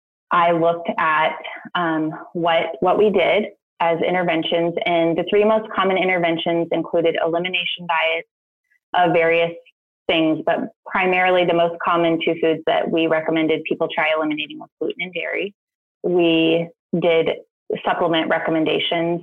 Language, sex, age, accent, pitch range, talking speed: English, female, 20-39, American, 165-190 Hz, 135 wpm